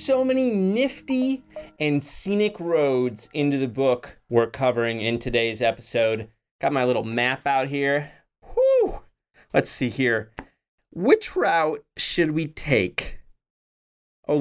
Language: English